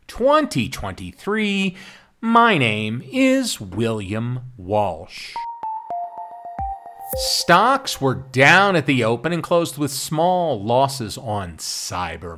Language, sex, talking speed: English, male, 90 wpm